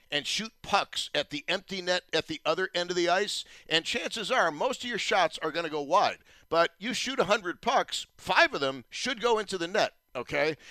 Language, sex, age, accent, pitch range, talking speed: English, male, 50-69, American, 145-195 Hz, 225 wpm